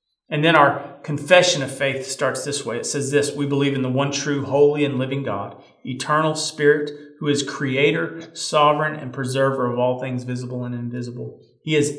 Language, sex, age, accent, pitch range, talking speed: English, male, 40-59, American, 125-150 Hz, 190 wpm